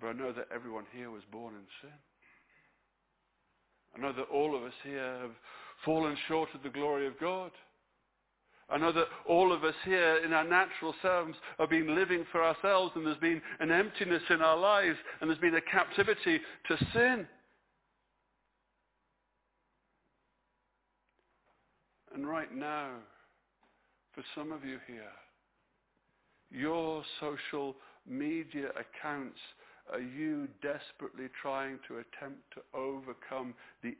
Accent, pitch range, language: British, 125-165 Hz, English